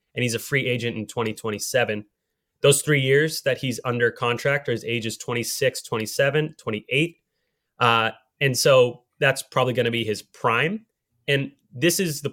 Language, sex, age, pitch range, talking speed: English, male, 30-49, 110-140 Hz, 170 wpm